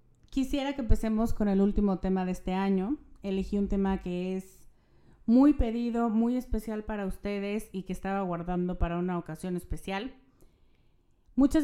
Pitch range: 185-225 Hz